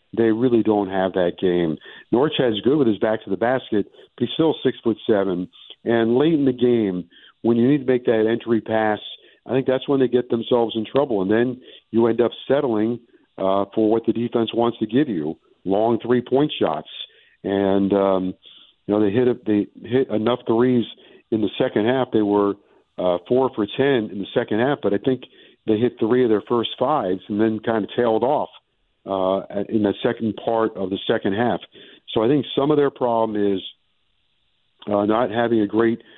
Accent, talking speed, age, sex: American, 205 wpm, 50-69, male